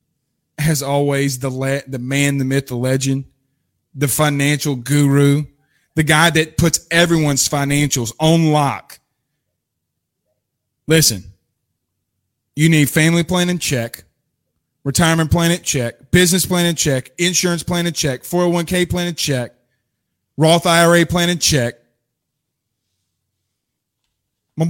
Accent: American